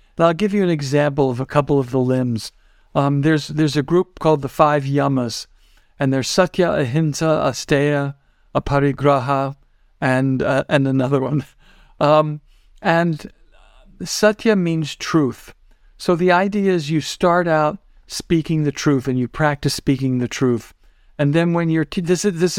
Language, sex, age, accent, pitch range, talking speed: English, male, 50-69, American, 130-155 Hz, 155 wpm